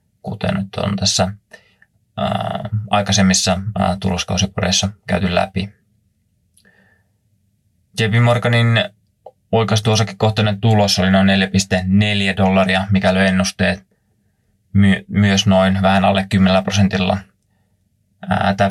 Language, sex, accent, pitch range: Finnish, male, native, 95-105 Hz